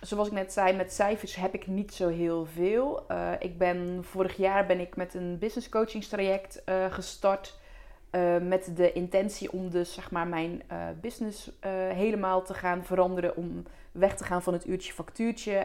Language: Dutch